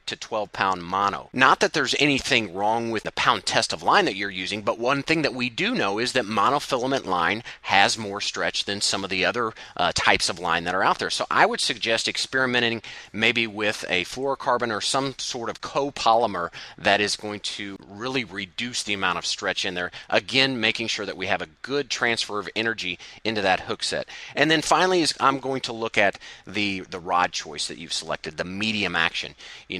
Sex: male